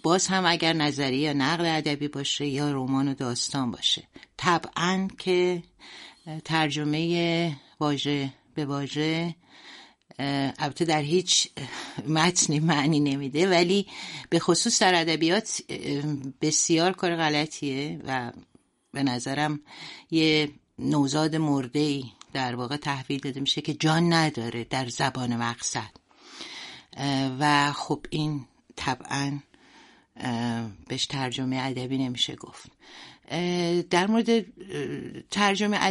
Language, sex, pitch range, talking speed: Persian, female, 140-170 Hz, 100 wpm